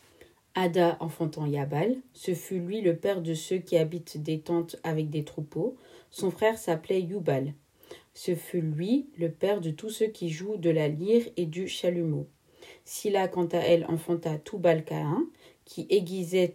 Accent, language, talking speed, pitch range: French, French, 165 wpm, 160-180 Hz